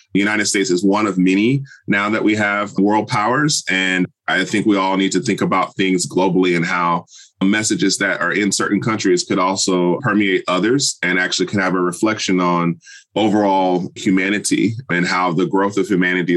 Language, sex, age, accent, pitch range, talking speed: English, male, 20-39, American, 95-110 Hz, 185 wpm